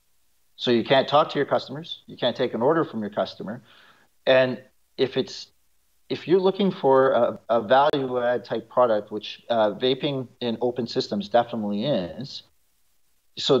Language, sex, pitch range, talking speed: English, male, 100-140 Hz, 160 wpm